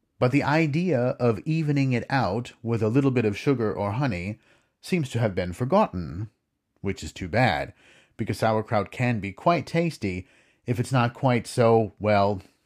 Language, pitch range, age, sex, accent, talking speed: English, 105-140 Hz, 40-59, male, American, 170 wpm